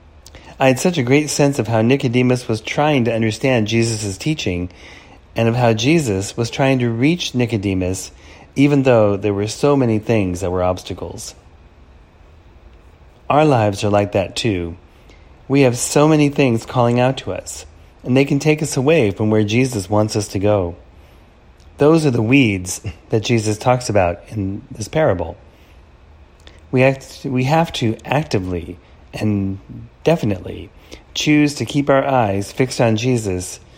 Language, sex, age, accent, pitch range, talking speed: English, male, 30-49, American, 85-130 Hz, 155 wpm